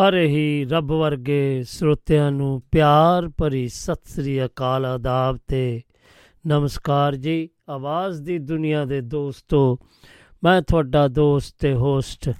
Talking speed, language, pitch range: 120 wpm, Punjabi, 130-155 Hz